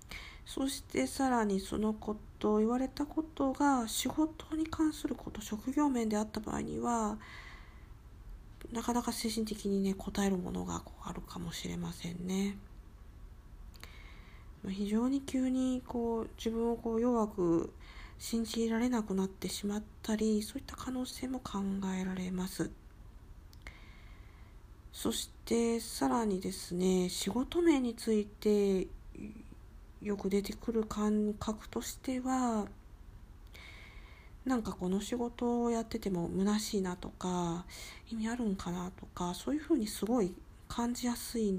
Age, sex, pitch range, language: 50-69, female, 180-240 Hz, Japanese